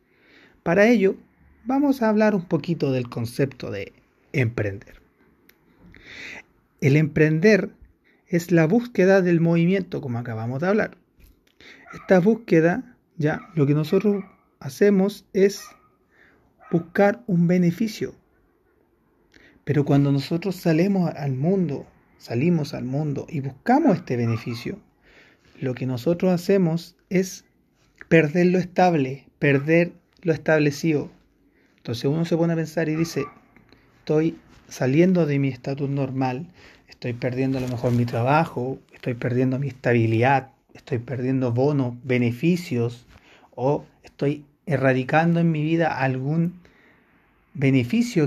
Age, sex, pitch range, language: 30-49, male, 130-175 Hz, Spanish